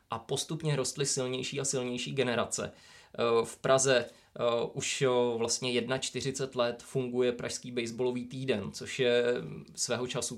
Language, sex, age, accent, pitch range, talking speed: Czech, male, 20-39, native, 120-130 Hz, 120 wpm